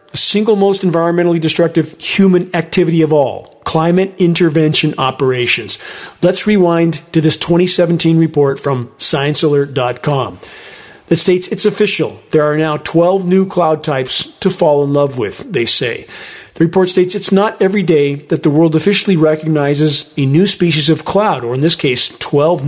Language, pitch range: English, 145-175 Hz